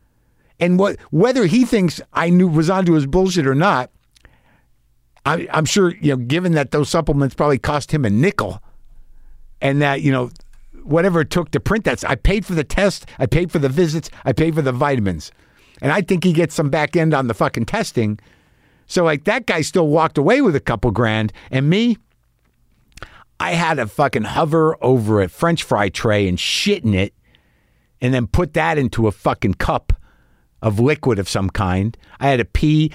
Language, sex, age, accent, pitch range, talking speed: English, male, 50-69, American, 105-160 Hz, 195 wpm